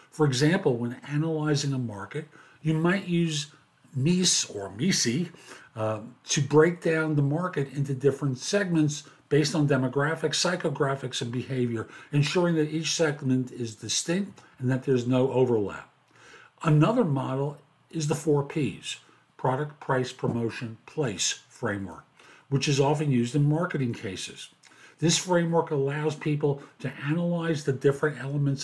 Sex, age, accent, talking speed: male, 50-69, American, 135 wpm